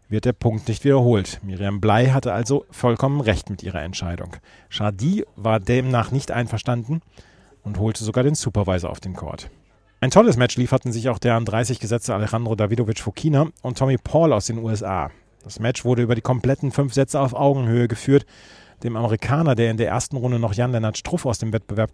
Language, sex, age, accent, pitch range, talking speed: German, male, 40-59, German, 110-130 Hz, 185 wpm